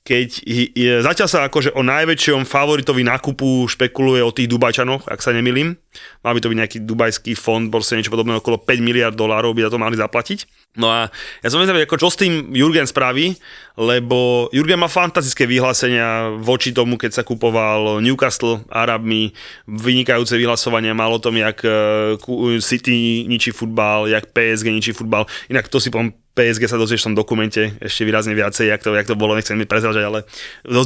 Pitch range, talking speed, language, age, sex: 115-135 Hz, 180 wpm, Slovak, 20-39, male